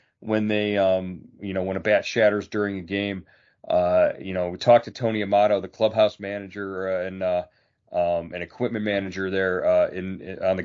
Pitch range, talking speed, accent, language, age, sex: 100-120 Hz, 205 wpm, American, English, 40-59, male